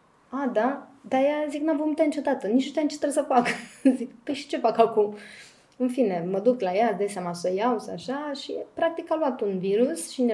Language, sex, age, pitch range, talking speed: Romanian, female, 20-39, 205-265 Hz, 250 wpm